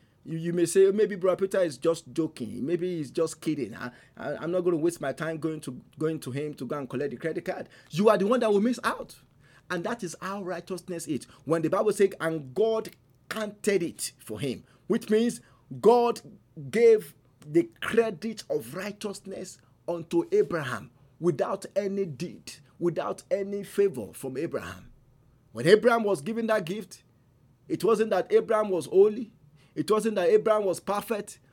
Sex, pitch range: male, 155-215 Hz